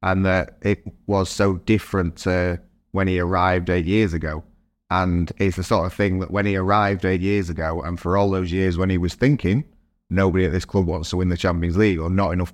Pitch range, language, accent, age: 80-95 Hz, English, British, 30-49